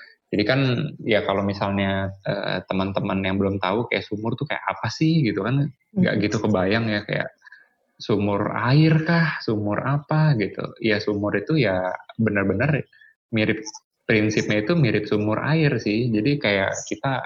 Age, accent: 20-39, native